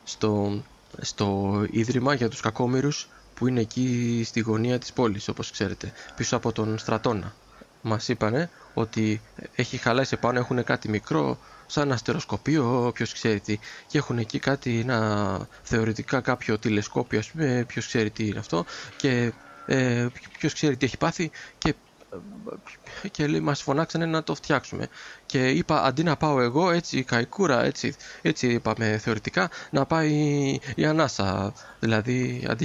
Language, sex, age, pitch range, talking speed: Greek, male, 20-39, 110-140 Hz, 150 wpm